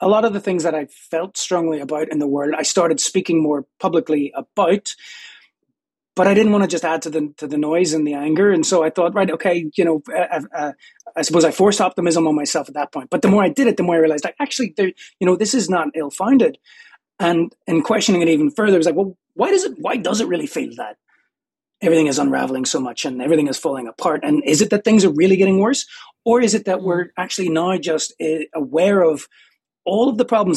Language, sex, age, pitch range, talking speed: English, male, 30-49, 160-220 Hz, 245 wpm